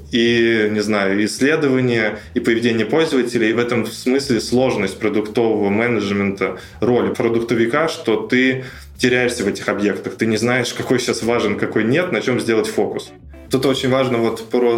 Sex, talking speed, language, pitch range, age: male, 150 wpm, Russian, 105-120 Hz, 20-39